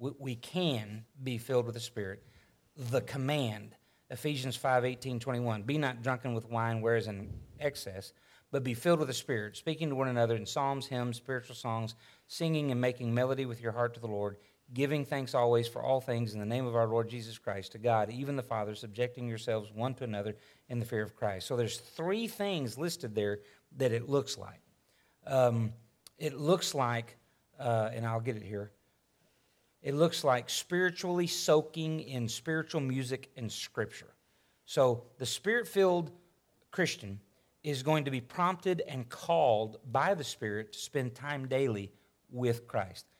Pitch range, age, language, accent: 115-145 Hz, 40-59, English, American